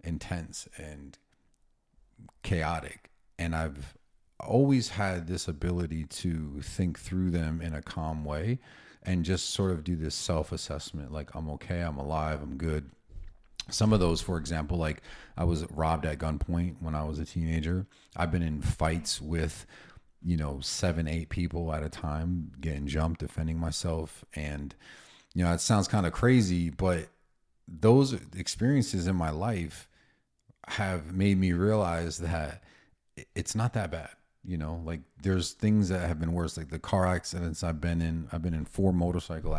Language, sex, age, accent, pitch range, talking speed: English, male, 40-59, American, 80-90 Hz, 165 wpm